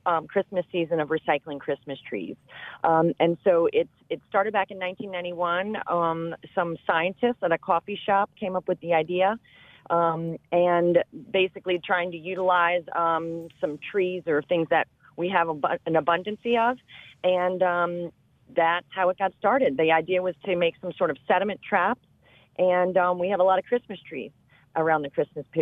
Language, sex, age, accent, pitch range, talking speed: English, female, 40-59, American, 165-195 Hz, 175 wpm